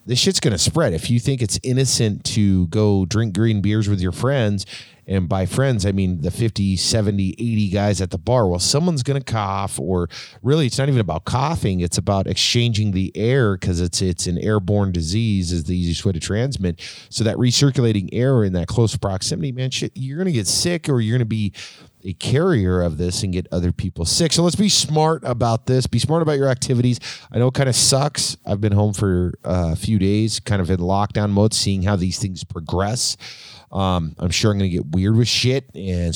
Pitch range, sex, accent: 90-120 Hz, male, American